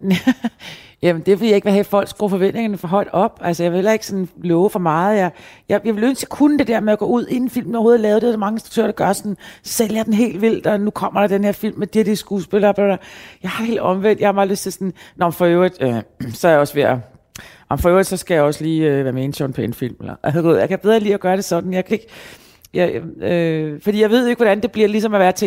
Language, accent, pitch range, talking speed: Danish, native, 155-205 Hz, 295 wpm